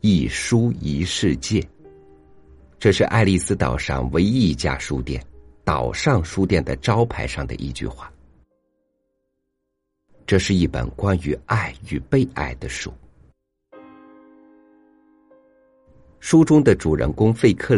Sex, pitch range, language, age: male, 70-110 Hz, Chinese, 50-69